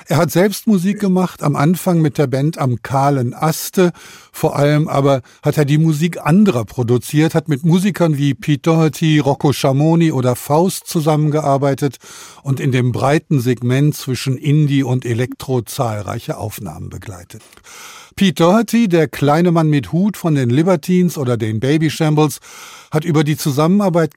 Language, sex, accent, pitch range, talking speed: German, male, German, 135-165 Hz, 155 wpm